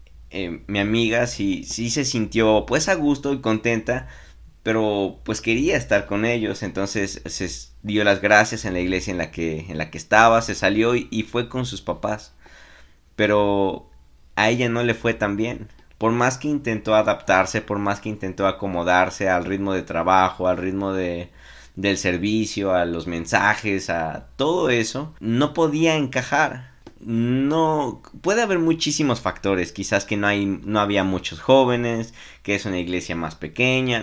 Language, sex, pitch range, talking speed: Spanish, male, 95-115 Hz, 165 wpm